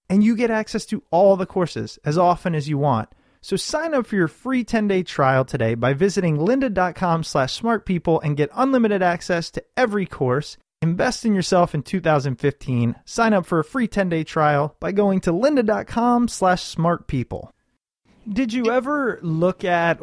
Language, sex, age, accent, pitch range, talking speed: English, male, 30-49, American, 145-195 Hz, 175 wpm